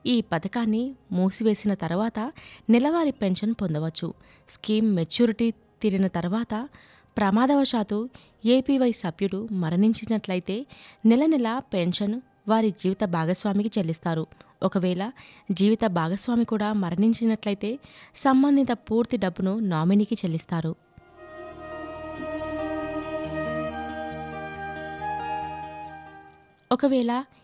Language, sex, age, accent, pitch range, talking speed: Telugu, female, 20-39, native, 185-240 Hz, 70 wpm